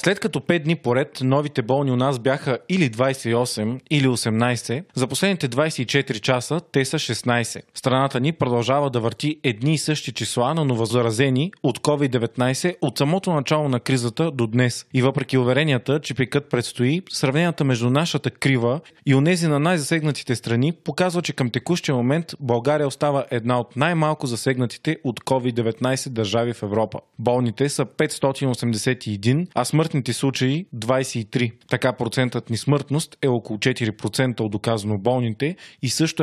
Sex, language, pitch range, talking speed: male, Bulgarian, 120-145 Hz, 155 wpm